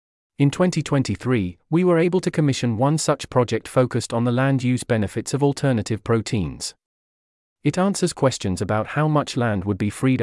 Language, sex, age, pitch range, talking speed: English, male, 40-59, 110-140 Hz, 165 wpm